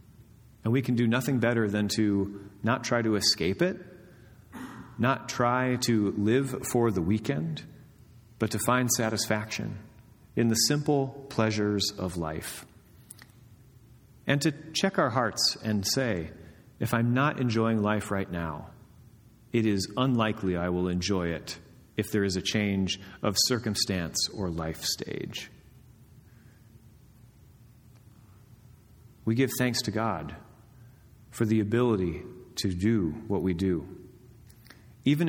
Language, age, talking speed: English, 30-49, 130 wpm